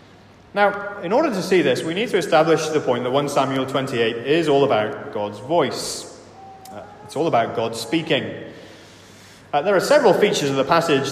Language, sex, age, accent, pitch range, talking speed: English, male, 30-49, British, 120-185 Hz, 190 wpm